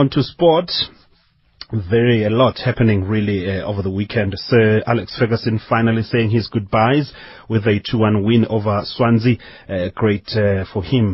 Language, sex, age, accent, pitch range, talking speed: English, male, 30-49, South African, 100-130 Hz, 160 wpm